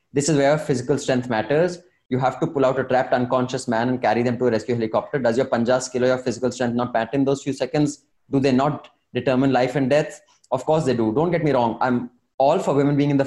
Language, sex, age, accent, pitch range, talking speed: English, male, 20-39, Indian, 125-155 Hz, 260 wpm